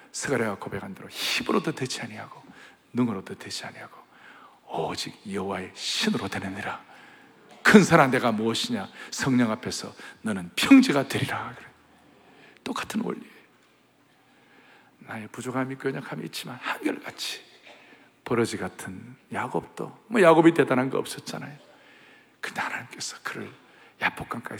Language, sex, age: Korean, male, 60-79